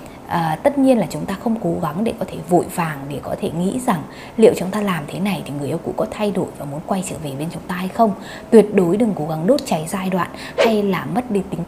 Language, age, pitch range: Vietnamese, 20-39, 170-225 Hz